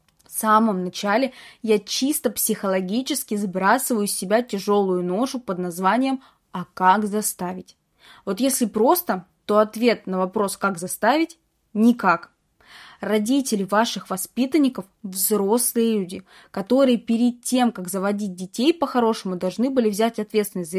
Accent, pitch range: native, 190-245 Hz